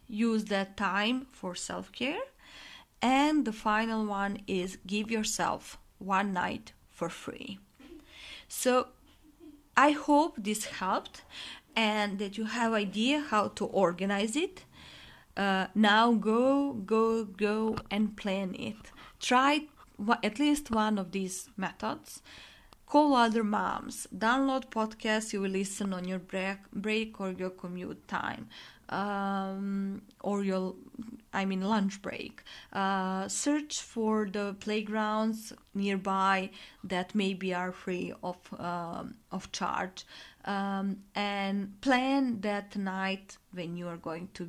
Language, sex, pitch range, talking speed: English, female, 195-235 Hz, 125 wpm